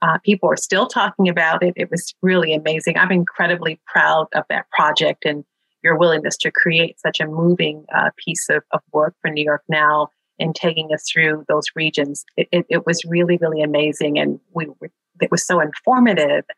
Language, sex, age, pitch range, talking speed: English, female, 40-59, 155-180 Hz, 190 wpm